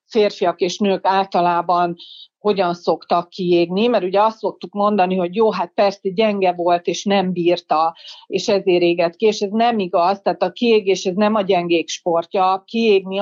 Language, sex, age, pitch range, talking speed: Hungarian, female, 40-59, 175-220 Hz, 175 wpm